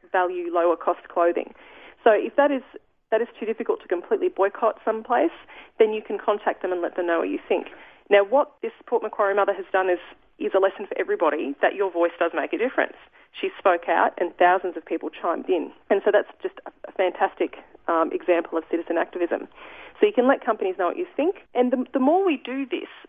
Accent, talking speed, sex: Australian, 220 wpm, female